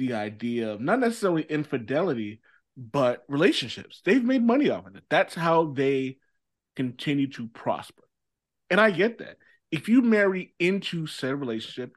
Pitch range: 115-160 Hz